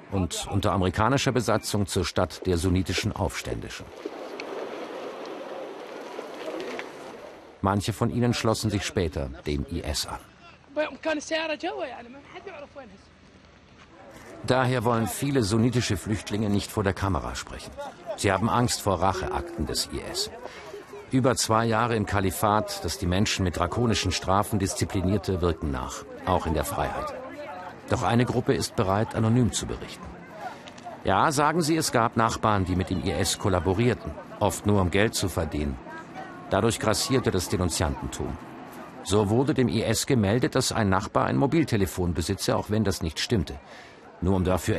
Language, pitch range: German, 90-120 Hz